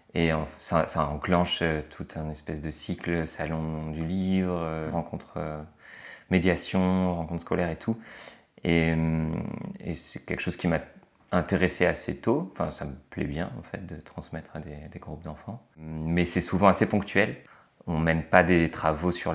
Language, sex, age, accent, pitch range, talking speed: French, male, 30-49, French, 80-95 Hz, 170 wpm